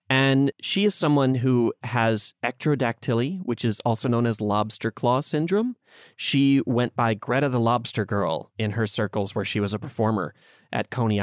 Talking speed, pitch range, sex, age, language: 170 wpm, 105-130 Hz, male, 30-49, English